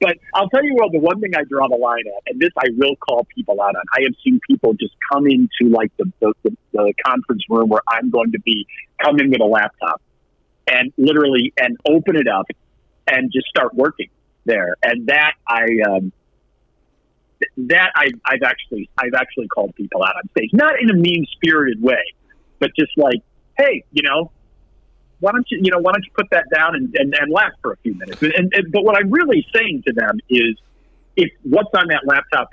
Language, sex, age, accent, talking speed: English, male, 50-69, American, 215 wpm